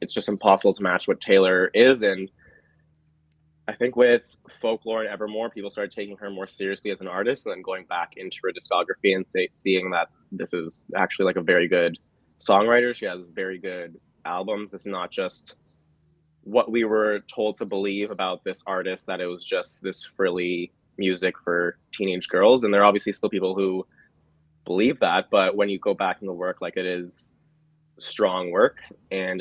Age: 20-39